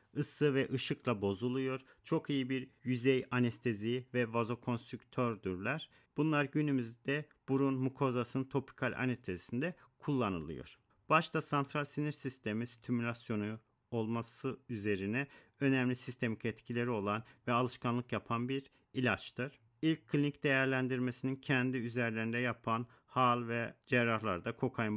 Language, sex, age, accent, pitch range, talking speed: Turkish, male, 40-59, native, 115-135 Hz, 105 wpm